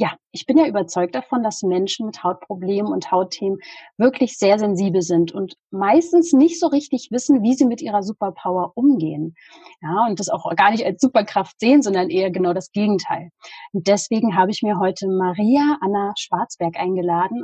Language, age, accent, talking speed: German, 30-49, German, 180 wpm